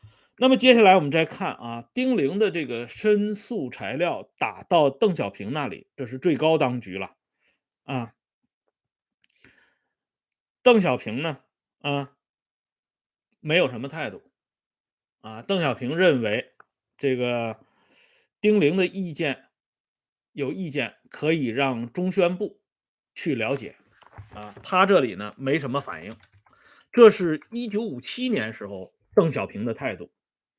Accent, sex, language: Chinese, male, Swedish